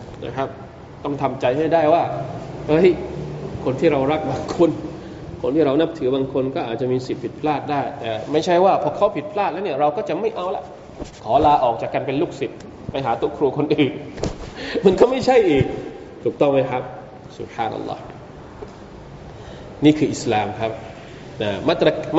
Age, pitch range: 20-39, 130-170 Hz